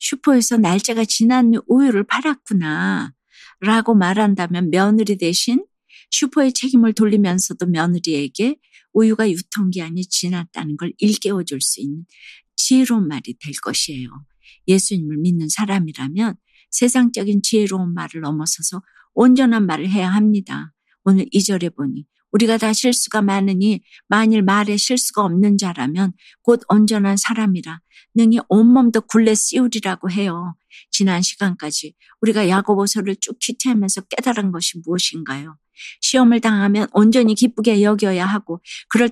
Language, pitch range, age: Korean, 175-225 Hz, 60-79